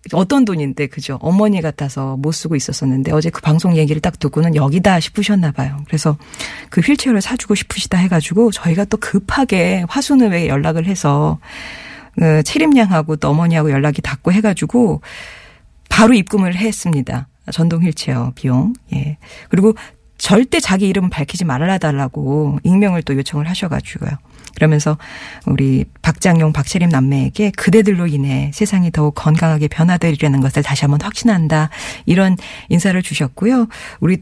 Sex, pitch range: female, 150-200 Hz